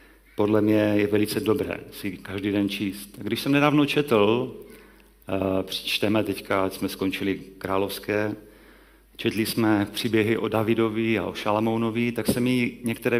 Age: 40-59